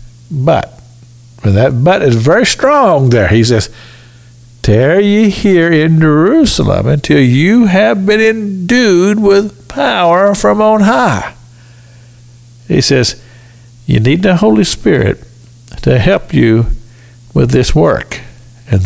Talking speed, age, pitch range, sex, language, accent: 120 wpm, 60-79, 120-200 Hz, male, English, American